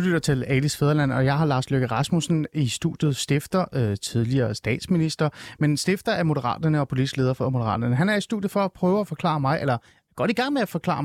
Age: 30-49